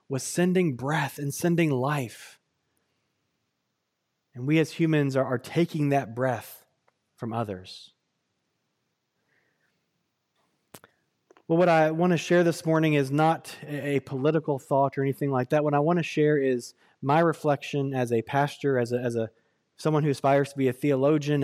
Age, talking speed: 20-39, 155 wpm